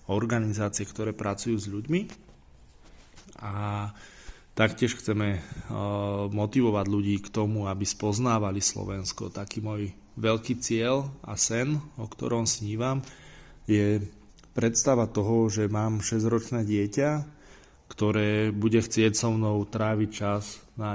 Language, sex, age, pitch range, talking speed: Slovak, male, 20-39, 105-115 Hz, 110 wpm